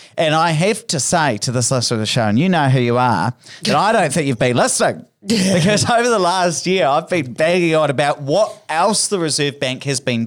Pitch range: 125-175 Hz